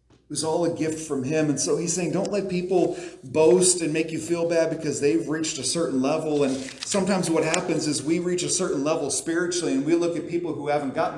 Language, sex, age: English, male, 40-59